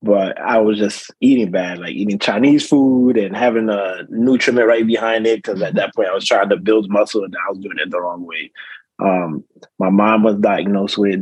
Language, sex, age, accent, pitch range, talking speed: English, male, 20-39, American, 95-110 Hz, 220 wpm